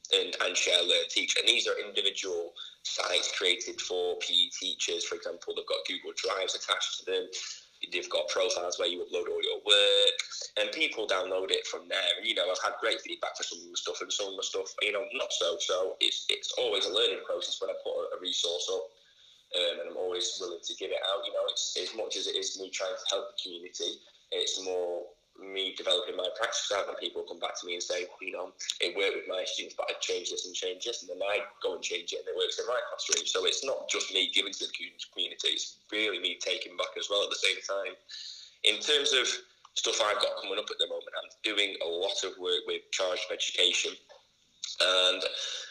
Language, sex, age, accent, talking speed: English, male, 10-29, British, 235 wpm